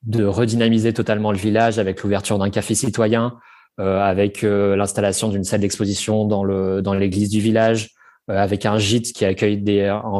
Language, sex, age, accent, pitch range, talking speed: French, male, 20-39, French, 100-110 Hz, 180 wpm